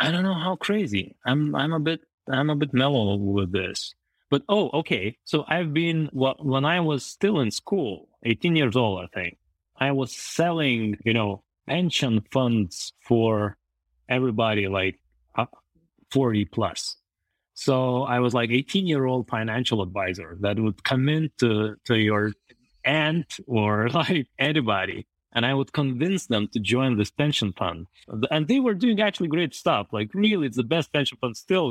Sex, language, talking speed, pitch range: male, English, 170 wpm, 105-145 Hz